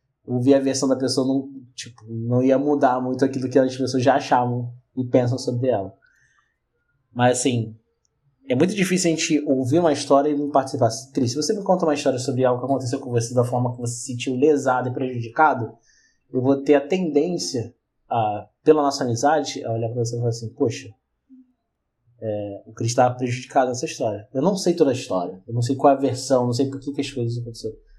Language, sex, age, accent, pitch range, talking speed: Portuguese, male, 20-39, Brazilian, 120-145 Hz, 215 wpm